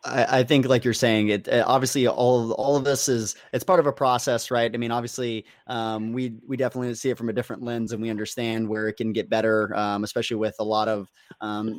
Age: 20-39